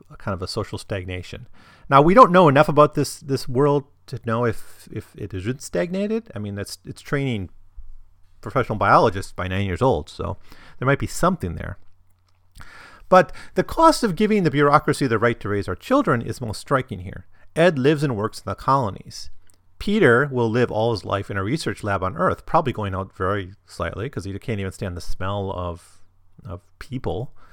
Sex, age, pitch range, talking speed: male, 40-59, 95-135 Hz, 195 wpm